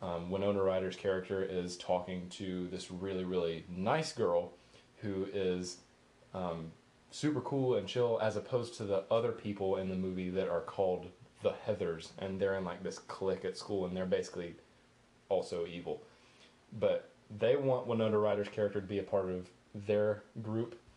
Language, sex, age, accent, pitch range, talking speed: English, male, 20-39, American, 95-115 Hz, 170 wpm